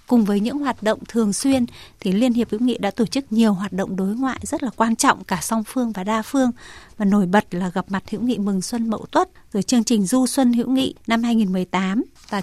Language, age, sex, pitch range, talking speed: Vietnamese, 20-39, female, 205-245 Hz, 250 wpm